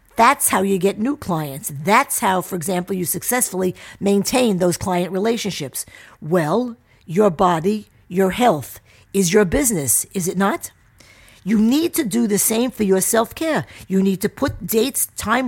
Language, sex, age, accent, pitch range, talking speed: English, female, 50-69, American, 175-235 Hz, 165 wpm